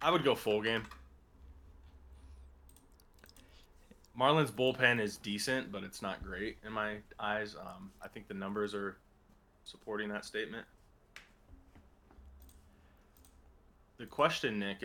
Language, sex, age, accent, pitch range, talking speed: English, male, 20-39, American, 70-110 Hz, 115 wpm